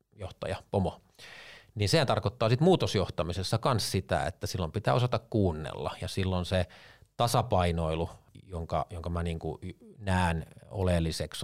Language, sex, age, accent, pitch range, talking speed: Finnish, male, 30-49, native, 90-115 Hz, 120 wpm